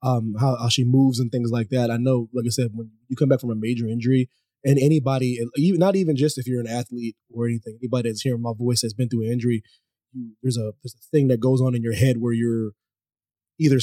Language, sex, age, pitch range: English, male, 20-39, 115-140 Hz